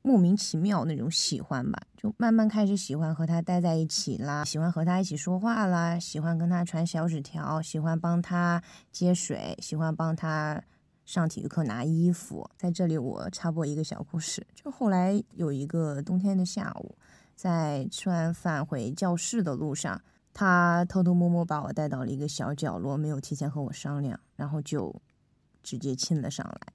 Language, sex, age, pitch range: Chinese, female, 20-39, 155-200 Hz